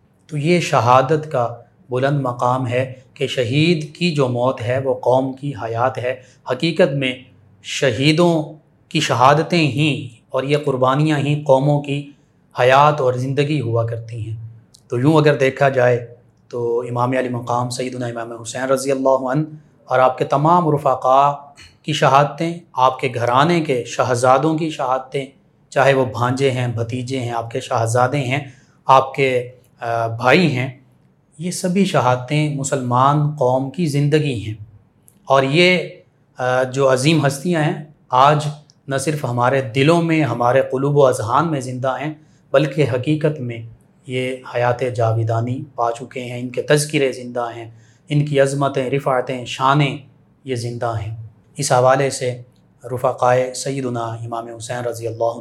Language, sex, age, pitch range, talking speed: Urdu, male, 30-49, 125-145 Hz, 150 wpm